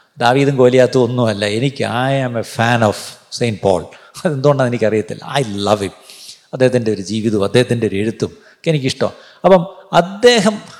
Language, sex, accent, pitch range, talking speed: Malayalam, male, native, 120-200 Hz, 140 wpm